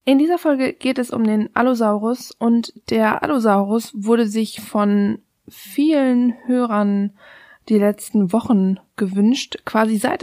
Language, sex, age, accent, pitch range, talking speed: German, female, 20-39, German, 200-240 Hz, 130 wpm